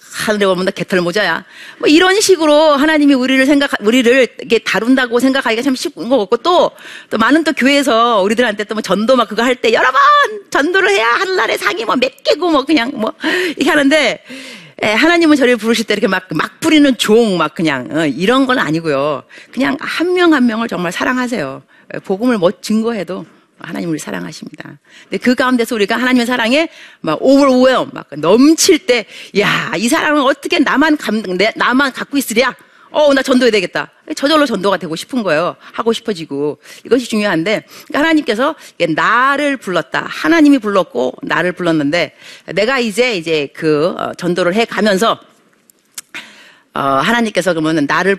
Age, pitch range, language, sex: 40-59, 195-295 Hz, Korean, female